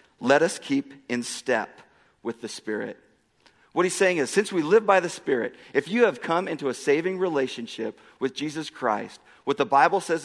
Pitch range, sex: 135-180 Hz, male